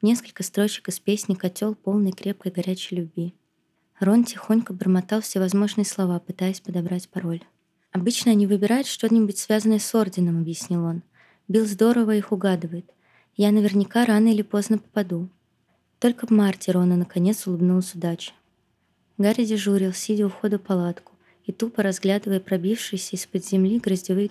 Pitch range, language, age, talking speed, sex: 185-215 Hz, Russian, 20-39, 140 wpm, female